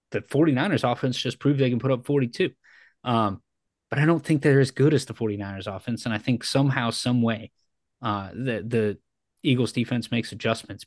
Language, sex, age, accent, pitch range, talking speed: English, male, 20-39, American, 105-125 Hz, 195 wpm